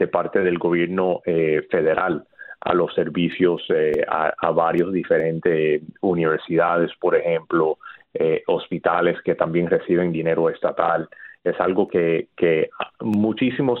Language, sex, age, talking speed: Spanish, male, 30-49, 125 wpm